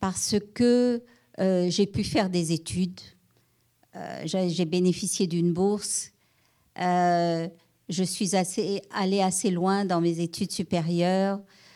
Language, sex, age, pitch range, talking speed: English, female, 50-69, 180-215 Hz, 125 wpm